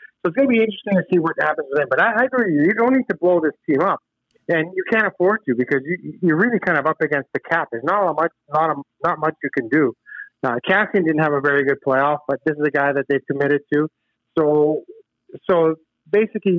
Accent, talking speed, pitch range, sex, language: American, 260 wpm, 140-180 Hz, male, English